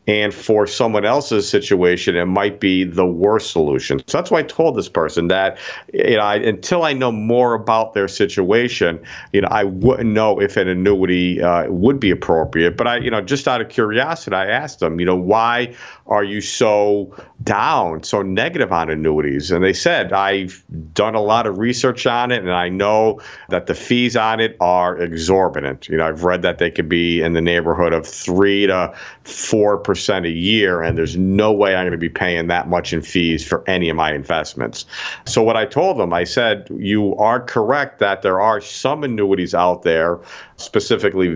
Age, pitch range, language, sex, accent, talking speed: 50-69, 85-105 Hz, English, male, American, 200 wpm